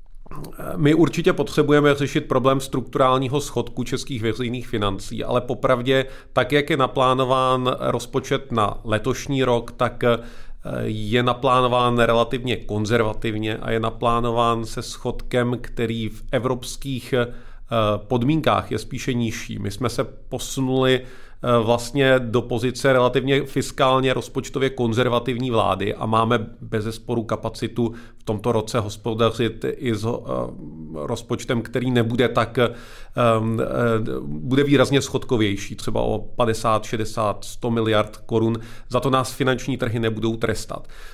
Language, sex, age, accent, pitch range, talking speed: Czech, male, 40-59, native, 115-135 Hz, 115 wpm